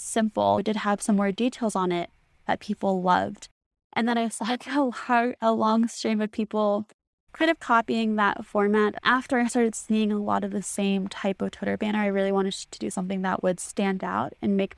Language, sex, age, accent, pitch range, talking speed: English, female, 20-39, American, 195-230 Hz, 205 wpm